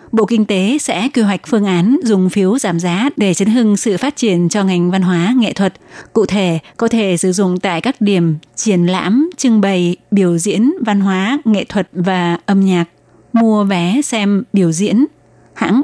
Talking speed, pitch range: 195 wpm, 185-230 Hz